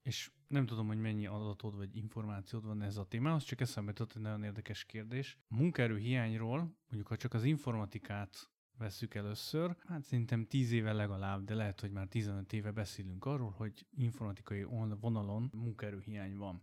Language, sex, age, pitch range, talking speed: Hungarian, male, 30-49, 105-130 Hz, 160 wpm